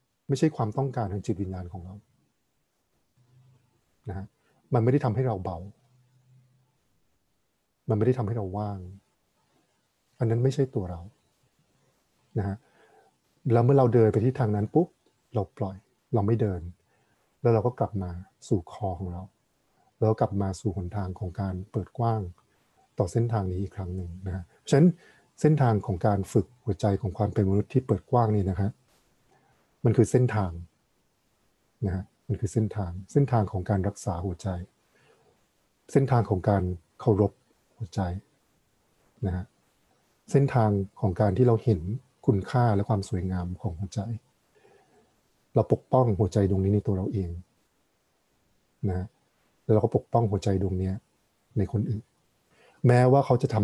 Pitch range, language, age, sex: 95-125 Hz, English, 60-79, male